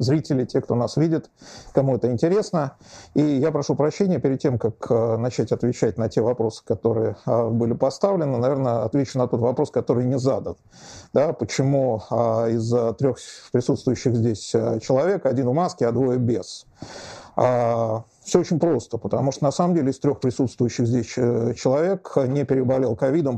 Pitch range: 120-140 Hz